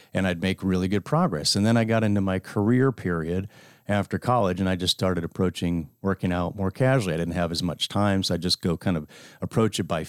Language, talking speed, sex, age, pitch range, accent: English, 240 wpm, male, 40-59, 95-125 Hz, American